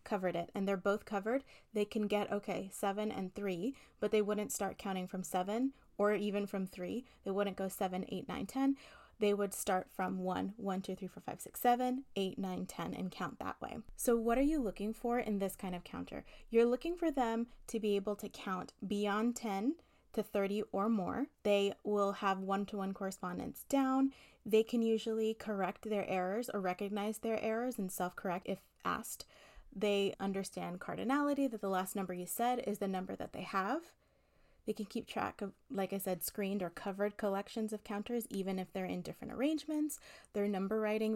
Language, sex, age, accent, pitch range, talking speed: English, female, 20-39, American, 190-225 Hz, 200 wpm